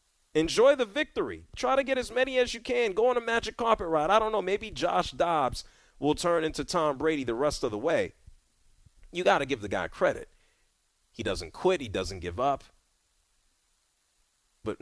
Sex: male